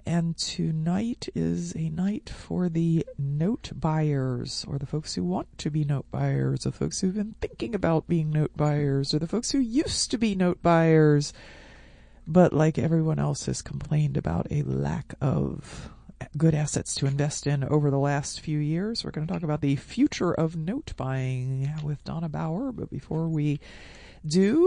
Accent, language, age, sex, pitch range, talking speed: American, English, 40-59, female, 140-185 Hz, 180 wpm